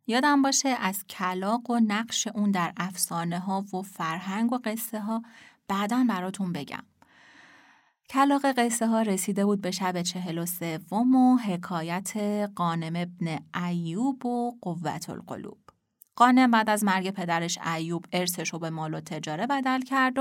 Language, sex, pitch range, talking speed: Persian, female, 175-240 Hz, 145 wpm